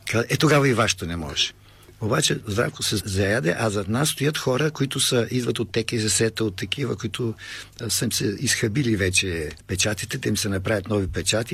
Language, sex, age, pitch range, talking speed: Bulgarian, male, 50-69, 95-120 Hz, 185 wpm